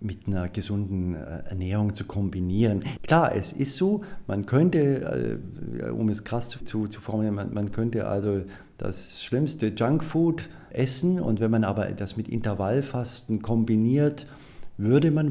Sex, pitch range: male, 100-125 Hz